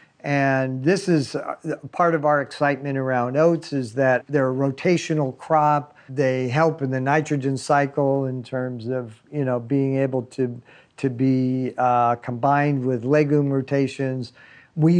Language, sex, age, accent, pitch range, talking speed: English, male, 50-69, American, 130-155 Hz, 150 wpm